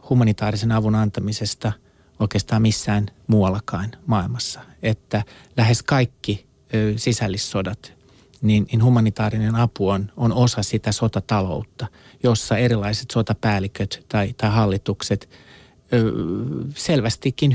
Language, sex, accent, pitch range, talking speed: Finnish, male, native, 105-125 Hz, 90 wpm